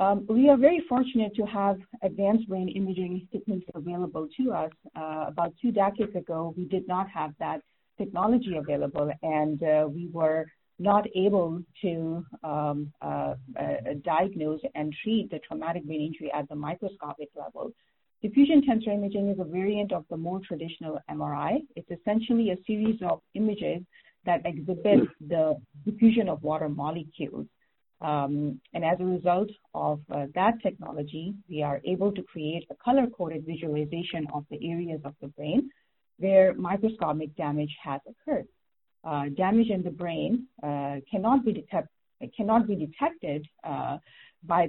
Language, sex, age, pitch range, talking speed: English, female, 40-59, 150-205 Hz, 150 wpm